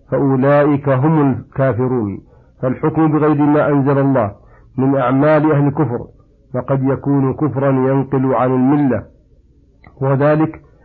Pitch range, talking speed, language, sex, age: 130-140 Hz, 105 wpm, Arabic, male, 50-69